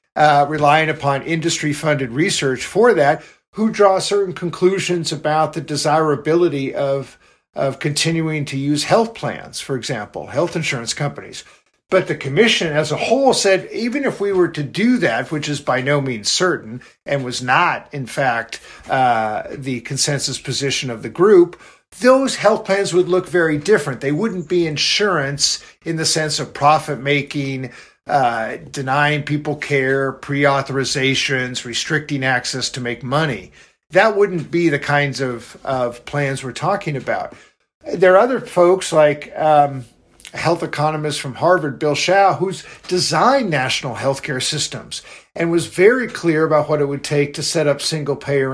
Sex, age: male, 50-69